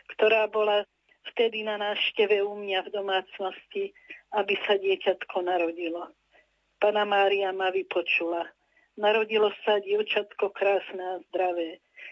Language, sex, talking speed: Slovak, female, 115 wpm